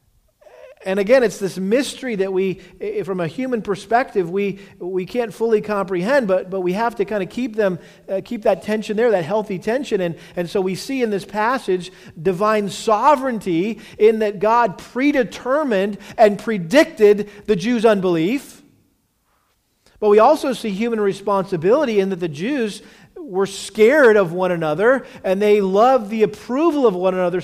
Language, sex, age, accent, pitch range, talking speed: English, male, 40-59, American, 195-255 Hz, 165 wpm